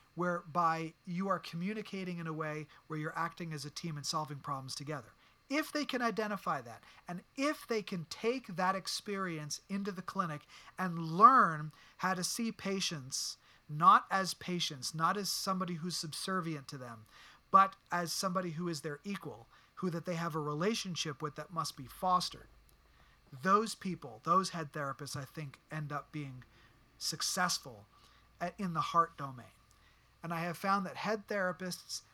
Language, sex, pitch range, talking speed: English, male, 145-185 Hz, 165 wpm